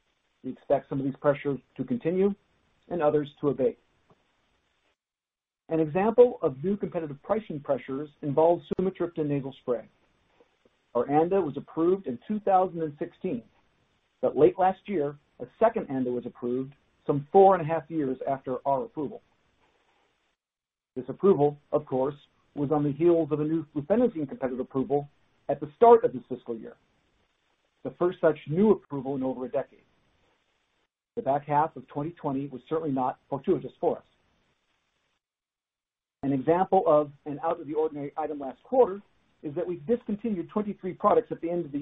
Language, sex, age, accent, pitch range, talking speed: English, male, 50-69, American, 140-175 Hz, 155 wpm